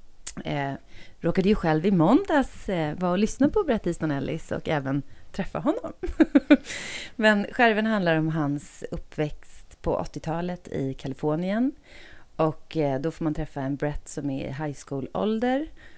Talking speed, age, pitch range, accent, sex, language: 160 wpm, 30-49, 140-180 Hz, native, female, Swedish